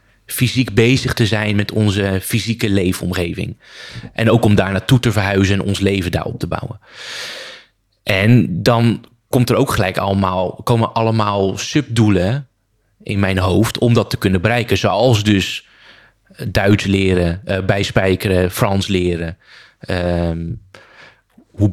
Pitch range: 100-120 Hz